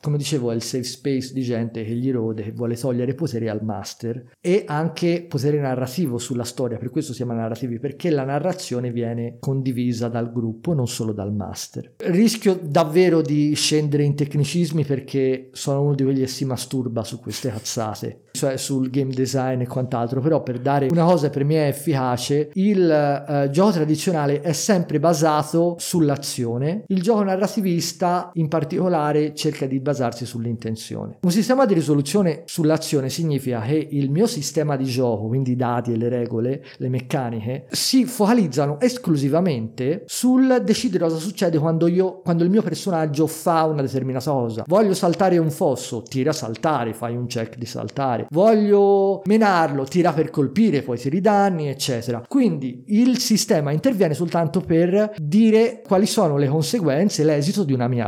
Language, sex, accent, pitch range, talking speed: Italian, male, native, 125-175 Hz, 165 wpm